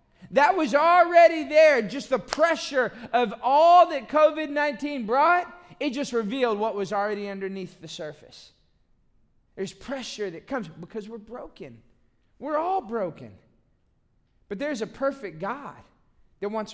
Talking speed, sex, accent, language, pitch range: 135 wpm, male, American, English, 175-280 Hz